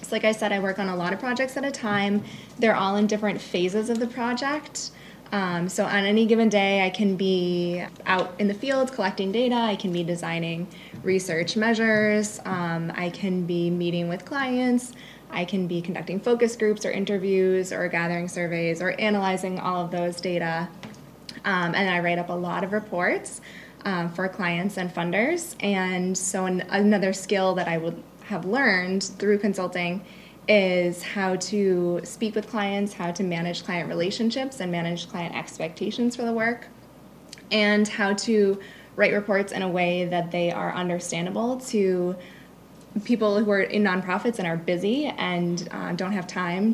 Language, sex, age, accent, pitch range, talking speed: English, female, 20-39, American, 175-210 Hz, 175 wpm